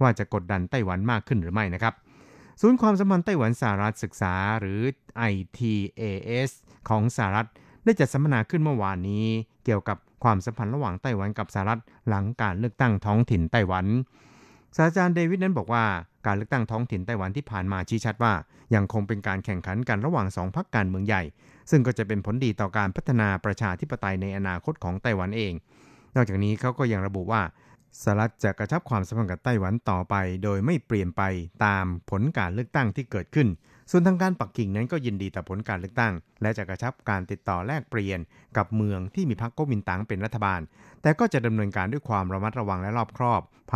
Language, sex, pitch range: Thai, male, 100-120 Hz